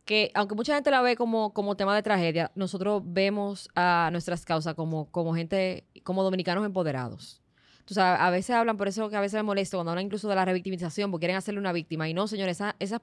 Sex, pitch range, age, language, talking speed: female, 165-205 Hz, 20-39, Spanish, 225 wpm